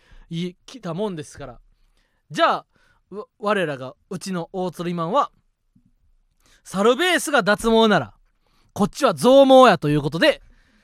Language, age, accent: Japanese, 20-39, native